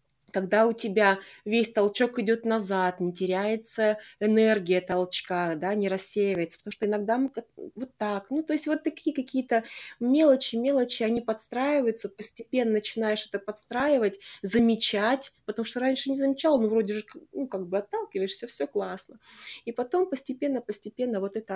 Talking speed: 150 wpm